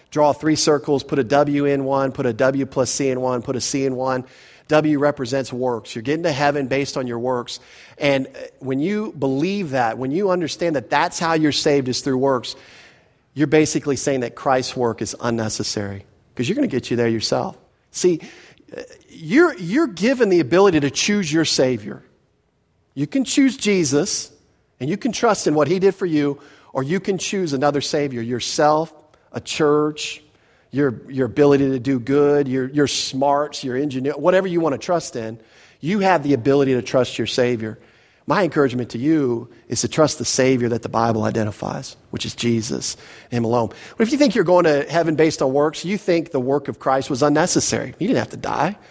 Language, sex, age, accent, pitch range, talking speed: English, male, 40-59, American, 125-160 Hz, 200 wpm